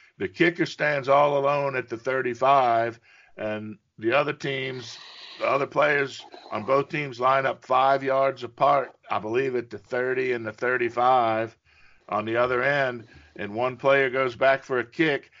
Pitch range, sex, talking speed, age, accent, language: 120-140 Hz, male, 170 wpm, 50-69, American, English